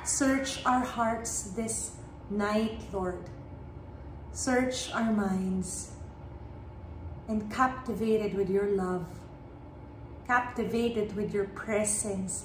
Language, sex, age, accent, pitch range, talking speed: English, female, 30-49, Filipino, 200-240 Hz, 85 wpm